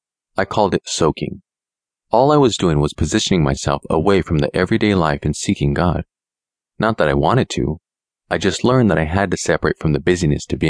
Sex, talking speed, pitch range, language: male, 210 wpm, 75-100 Hz, English